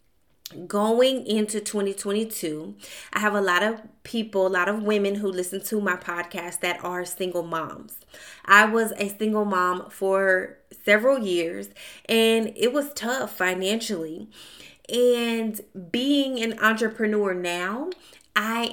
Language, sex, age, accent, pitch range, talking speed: English, female, 20-39, American, 190-230 Hz, 130 wpm